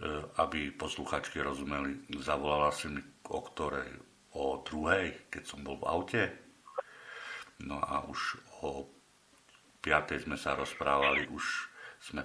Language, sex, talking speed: Slovak, male, 120 wpm